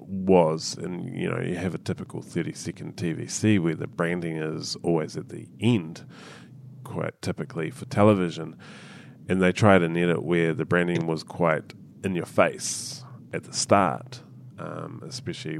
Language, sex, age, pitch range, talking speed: English, male, 30-49, 85-100 Hz, 160 wpm